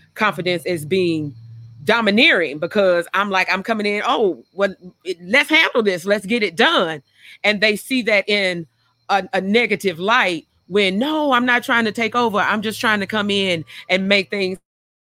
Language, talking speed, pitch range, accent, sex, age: English, 180 wpm, 170-230 Hz, American, female, 40-59